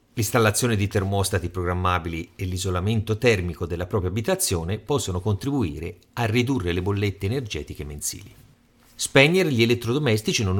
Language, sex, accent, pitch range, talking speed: Italian, male, native, 90-120 Hz, 125 wpm